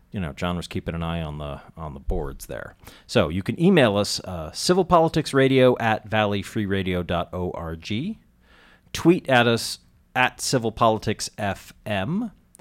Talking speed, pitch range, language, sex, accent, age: 140 wpm, 90-120 Hz, English, male, American, 40-59